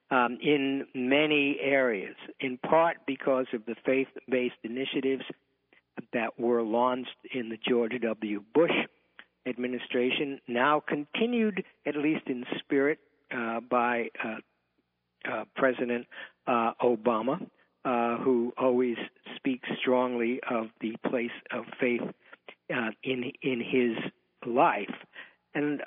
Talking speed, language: 115 wpm, English